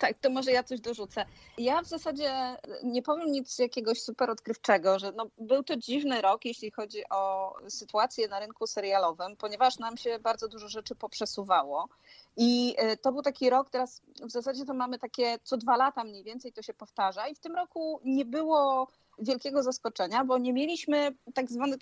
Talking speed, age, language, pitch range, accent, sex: 180 wpm, 30-49, Polish, 210-265 Hz, native, female